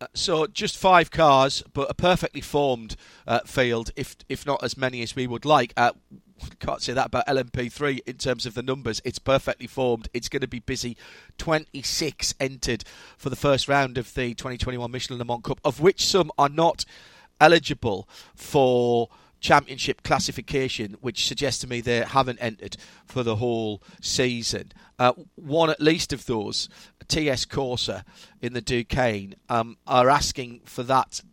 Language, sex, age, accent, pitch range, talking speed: English, male, 40-59, British, 115-145 Hz, 165 wpm